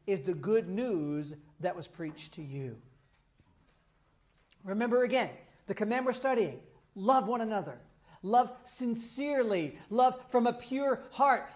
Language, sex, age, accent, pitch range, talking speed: English, male, 40-59, American, 190-260 Hz, 130 wpm